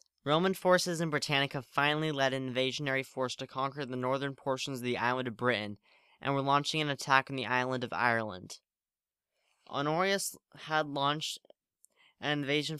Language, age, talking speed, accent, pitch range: English, 10-29, 160 wpm, American, 130-160 Hz